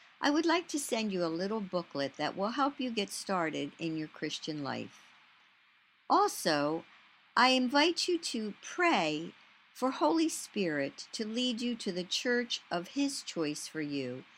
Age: 60-79